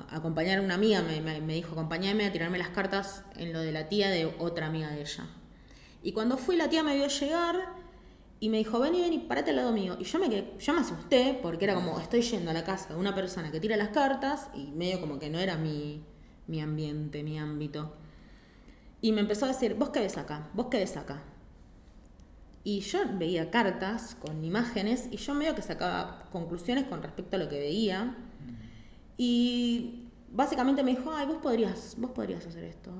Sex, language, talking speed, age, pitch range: female, Spanish, 210 wpm, 20-39, 155-215 Hz